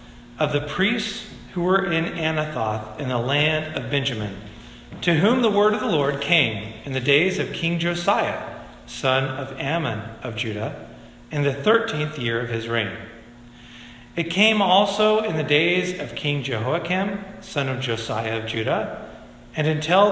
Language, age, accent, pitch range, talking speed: English, 40-59, American, 115-180 Hz, 160 wpm